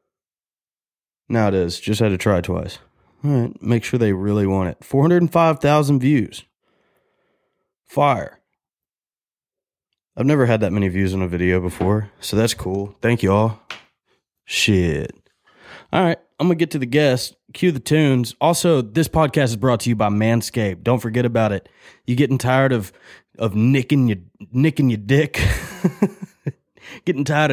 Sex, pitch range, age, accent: male, 105-140 Hz, 20-39, American